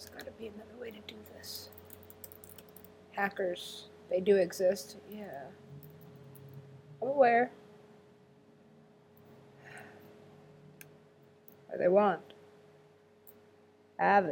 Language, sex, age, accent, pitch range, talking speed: English, female, 50-69, American, 140-215 Hz, 85 wpm